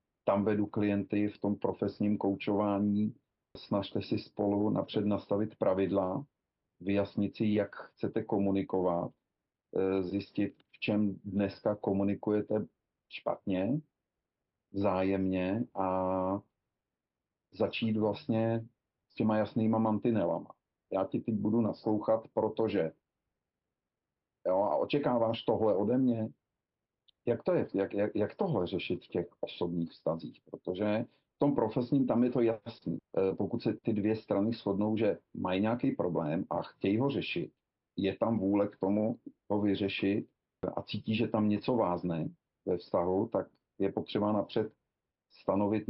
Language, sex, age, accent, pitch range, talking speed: Czech, male, 40-59, native, 100-110 Hz, 130 wpm